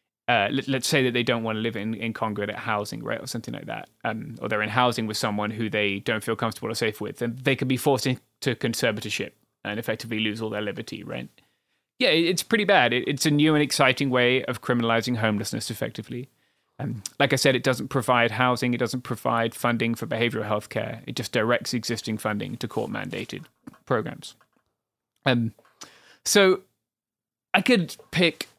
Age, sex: 20-39, male